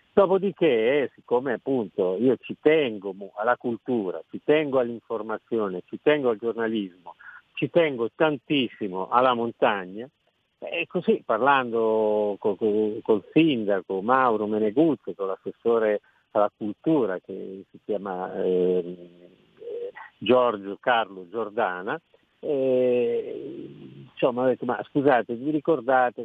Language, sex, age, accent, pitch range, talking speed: Italian, male, 50-69, native, 100-145 Hz, 105 wpm